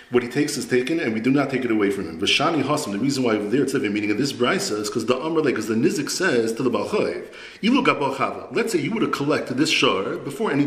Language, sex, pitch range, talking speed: English, male, 115-140 Hz, 285 wpm